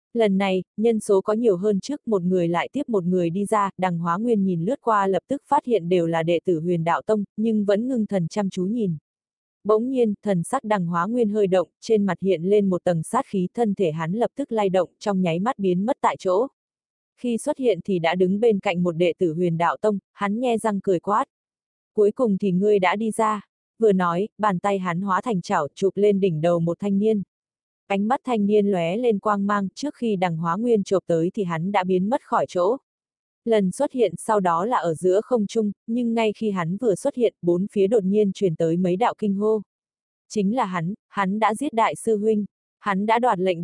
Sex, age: female, 20-39